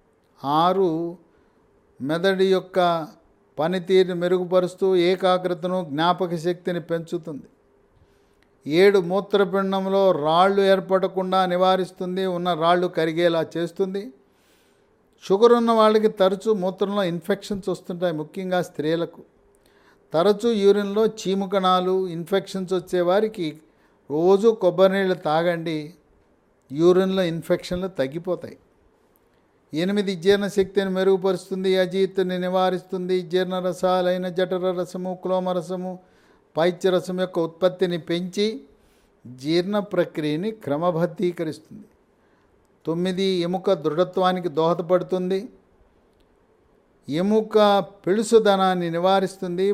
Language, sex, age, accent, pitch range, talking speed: English, male, 50-69, Indian, 175-190 Hz, 80 wpm